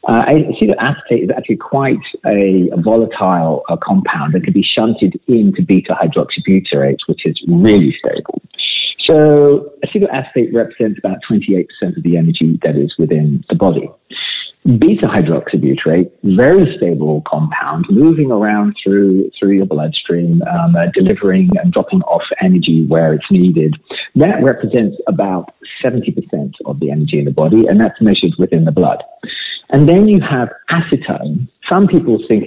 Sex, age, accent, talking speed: male, 40-59, British, 140 wpm